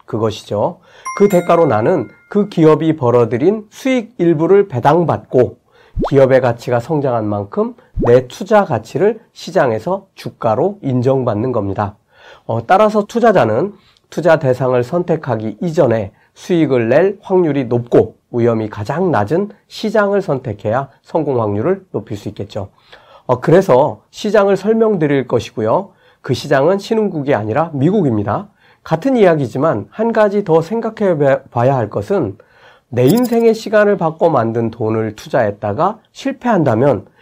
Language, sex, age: Korean, male, 40-59